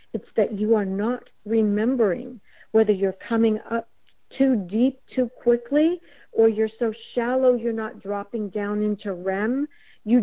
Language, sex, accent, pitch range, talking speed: English, female, American, 215-255 Hz, 145 wpm